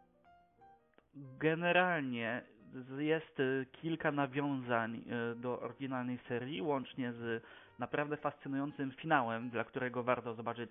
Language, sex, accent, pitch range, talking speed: Polish, male, native, 115-140 Hz, 90 wpm